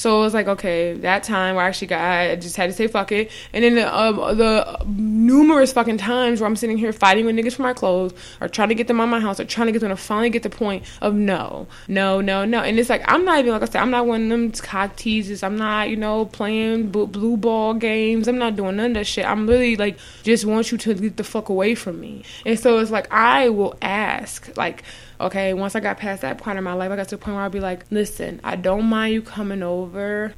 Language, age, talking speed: English, 20-39, 270 wpm